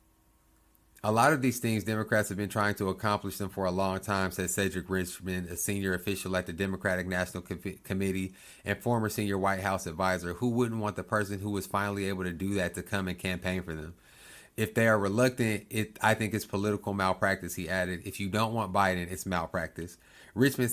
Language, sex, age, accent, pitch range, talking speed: English, male, 30-49, American, 90-105 Hz, 205 wpm